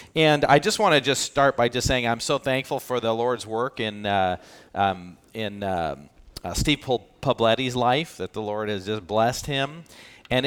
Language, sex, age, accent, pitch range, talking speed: English, male, 40-59, American, 100-140 Hz, 195 wpm